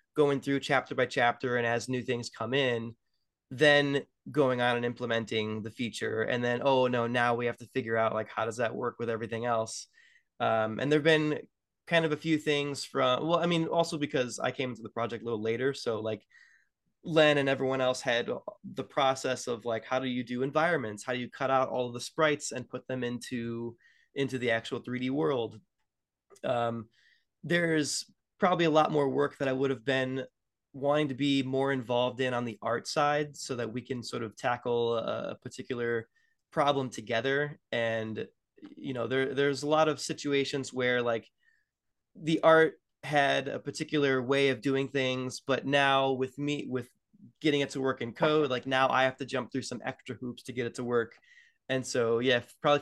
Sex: male